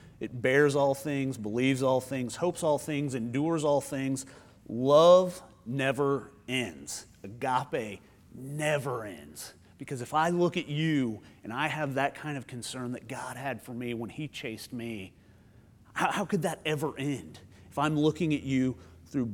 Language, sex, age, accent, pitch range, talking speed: English, male, 30-49, American, 120-155 Hz, 165 wpm